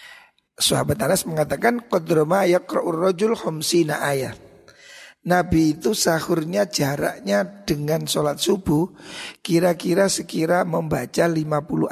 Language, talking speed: Indonesian, 85 wpm